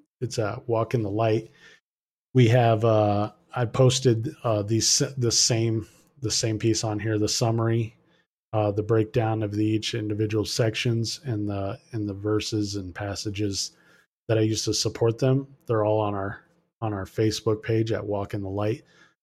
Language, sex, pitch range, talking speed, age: English, male, 105-125 Hz, 175 wpm, 20-39